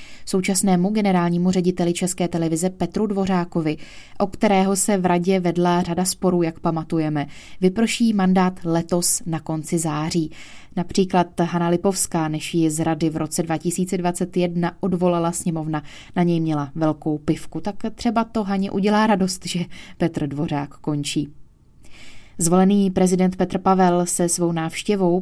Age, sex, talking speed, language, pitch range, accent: 20-39, female, 135 wpm, Czech, 165-195 Hz, native